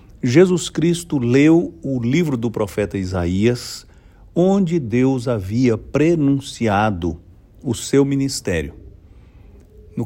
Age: 60-79